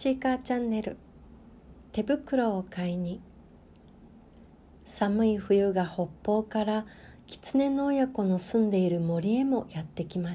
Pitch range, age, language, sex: 175-225 Hz, 40-59, Japanese, female